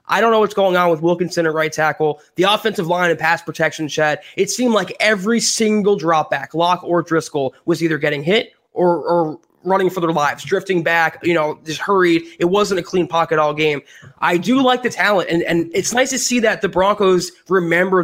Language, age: English, 20-39